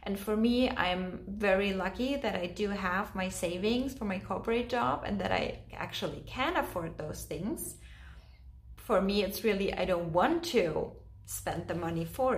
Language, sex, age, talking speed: English, female, 30-49, 175 wpm